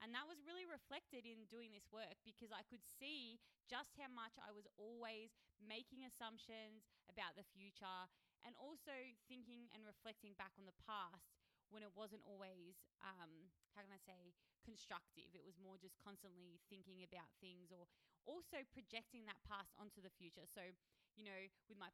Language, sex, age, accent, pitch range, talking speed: English, female, 20-39, Australian, 195-245 Hz, 175 wpm